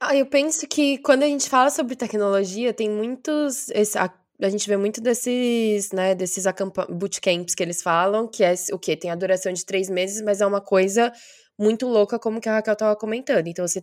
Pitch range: 180-215 Hz